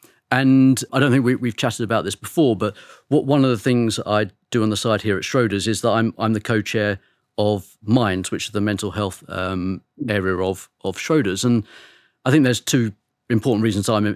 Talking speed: 210 wpm